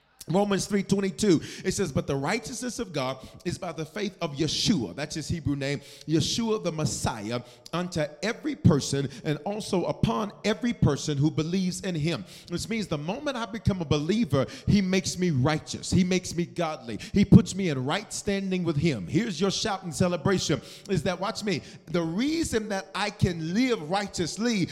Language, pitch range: English, 160-210 Hz